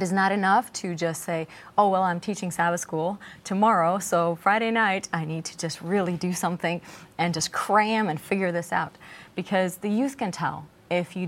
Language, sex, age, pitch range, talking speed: English, female, 30-49, 165-200 Hz, 200 wpm